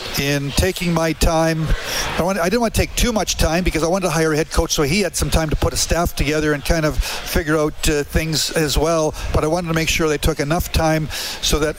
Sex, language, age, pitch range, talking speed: male, English, 50-69, 145-160 Hz, 260 wpm